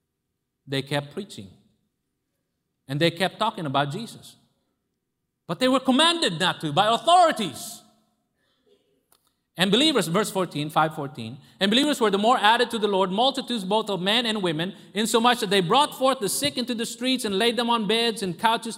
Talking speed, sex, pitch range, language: 175 wpm, male, 190-245 Hz, English